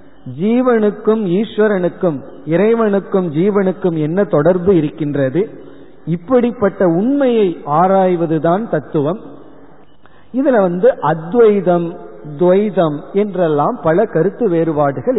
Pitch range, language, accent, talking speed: 150-205 Hz, Tamil, native, 75 wpm